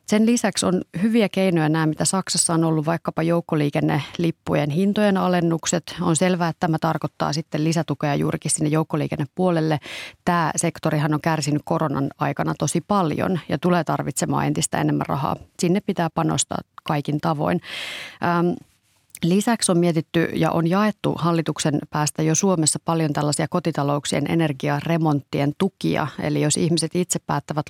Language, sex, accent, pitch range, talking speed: Finnish, female, native, 150-180 Hz, 135 wpm